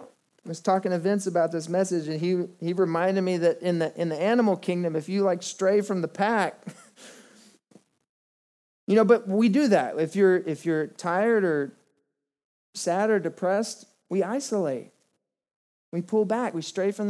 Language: English